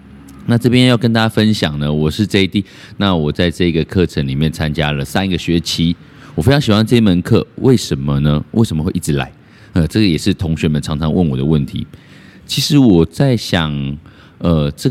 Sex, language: male, Chinese